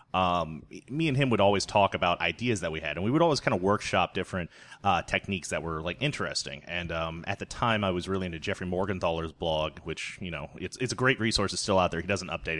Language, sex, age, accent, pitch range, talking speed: English, male, 30-49, American, 85-105 Hz, 250 wpm